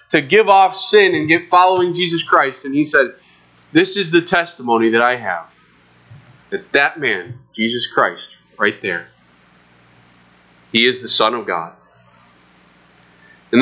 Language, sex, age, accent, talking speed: English, male, 30-49, American, 145 wpm